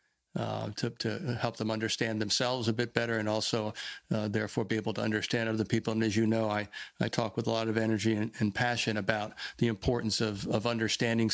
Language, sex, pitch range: English, male, 110-120 Hz